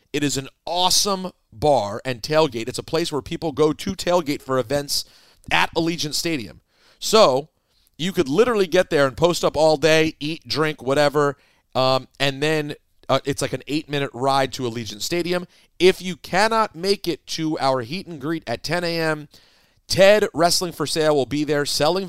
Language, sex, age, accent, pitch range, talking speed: English, male, 40-59, American, 125-170 Hz, 180 wpm